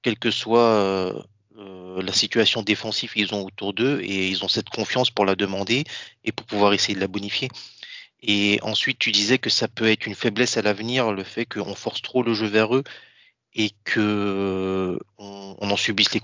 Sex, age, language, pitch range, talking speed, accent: male, 20-39, French, 100-115 Hz, 200 wpm, French